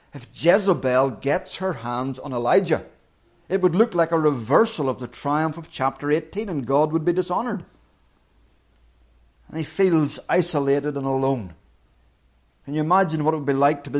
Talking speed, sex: 170 wpm, male